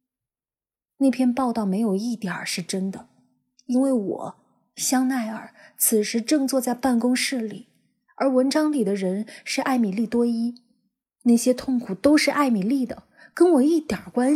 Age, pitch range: 20-39, 200-250 Hz